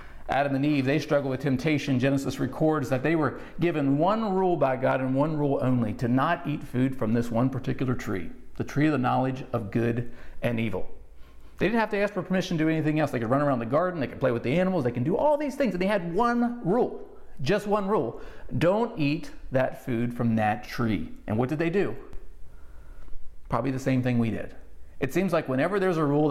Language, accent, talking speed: English, American, 230 wpm